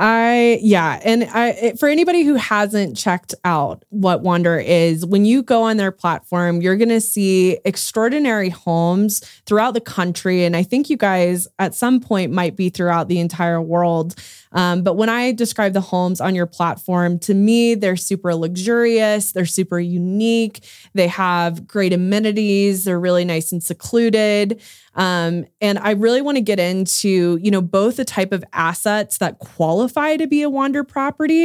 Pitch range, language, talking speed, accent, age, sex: 175-225 Hz, English, 170 wpm, American, 20-39, female